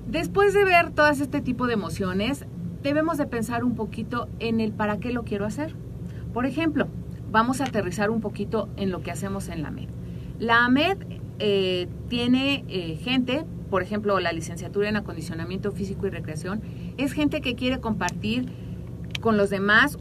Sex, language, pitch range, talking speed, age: female, Spanish, 185-240 Hz, 170 wpm, 40-59